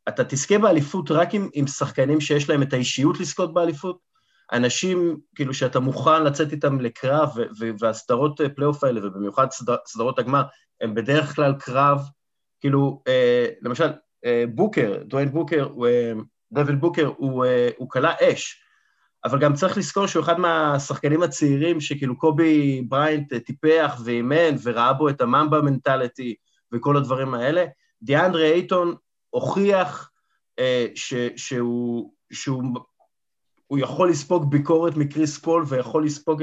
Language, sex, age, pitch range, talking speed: Hebrew, male, 30-49, 130-160 Hz, 135 wpm